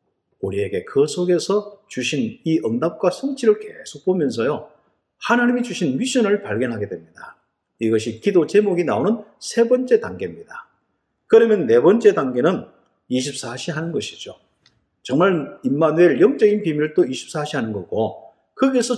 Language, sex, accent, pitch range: Korean, male, native, 160-250 Hz